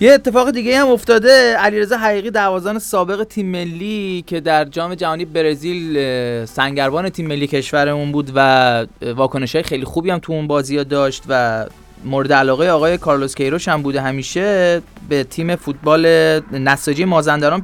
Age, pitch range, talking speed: 30-49, 140-180 Hz, 155 wpm